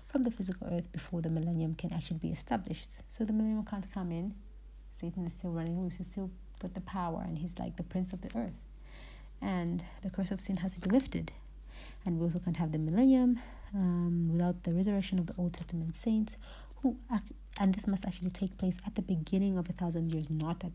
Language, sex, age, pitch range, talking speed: English, female, 30-49, 175-200 Hz, 220 wpm